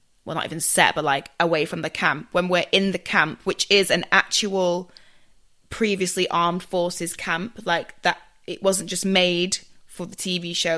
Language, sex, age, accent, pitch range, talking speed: English, female, 20-39, British, 165-195 Hz, 185 wpm